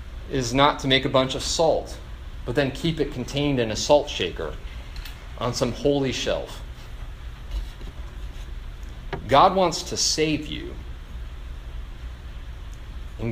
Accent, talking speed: American, 120 wpm